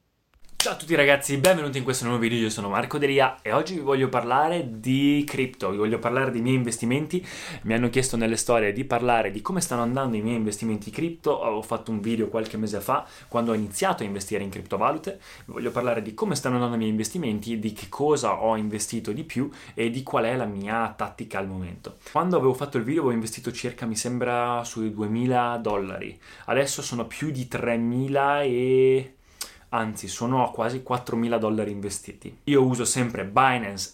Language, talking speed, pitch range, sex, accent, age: Italian, 195 wpm, 105-130 Hz, male, native, 20-39